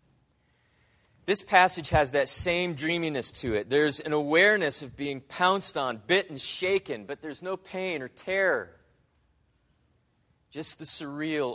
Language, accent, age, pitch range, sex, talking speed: English, American, 30-49, 130-170 Hz, male, 140 wpm